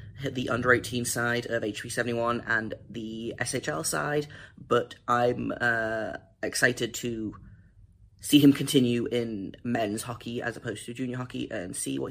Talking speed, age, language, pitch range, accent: 145 wpm, 30-49, English, 115-150 Hz, British